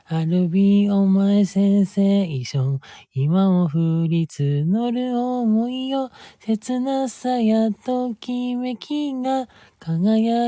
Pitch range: 175-245 Hz